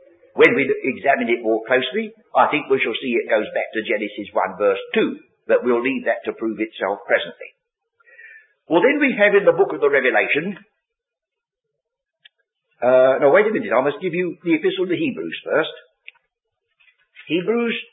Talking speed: 175 wpm